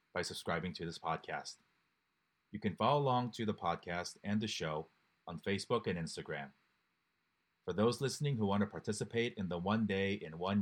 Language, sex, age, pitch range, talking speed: English, male, 30-49, 90-110 Hz, 180 wpm